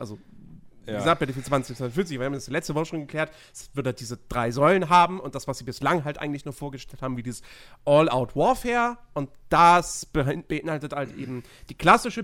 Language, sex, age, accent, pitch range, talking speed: German, male, 40-59, German, 130-205 Hz, 205 wpm